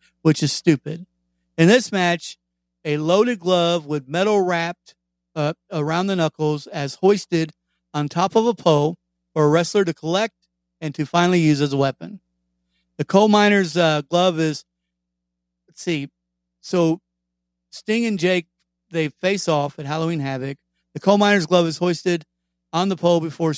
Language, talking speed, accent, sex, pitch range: English, 160 wpm, American, male, 145-180 Hz